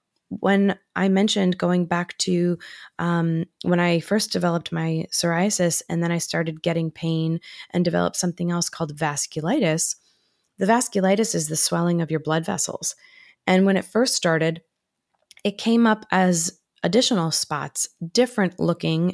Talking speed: 145 wpm